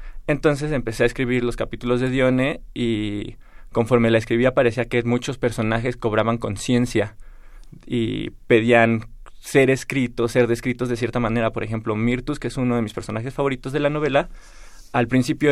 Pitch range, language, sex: 115-125 Hz, Spanish, male